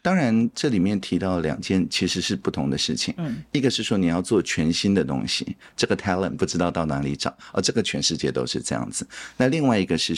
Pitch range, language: 85-110 Hz, Chinese